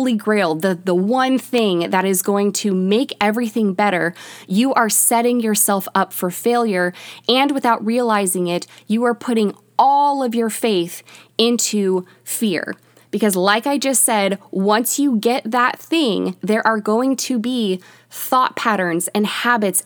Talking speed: 155 wpm